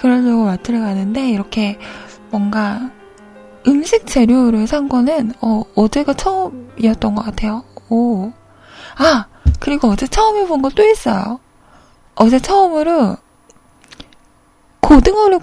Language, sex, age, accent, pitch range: Korean, female, 20-39, native, 220-300 Hz